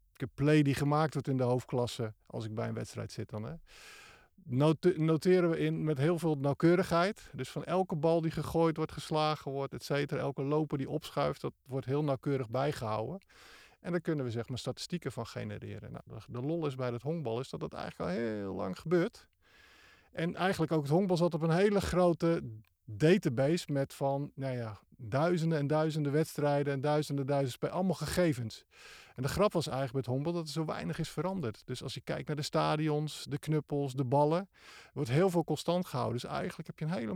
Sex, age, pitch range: male, 50-69, 125-165 Hz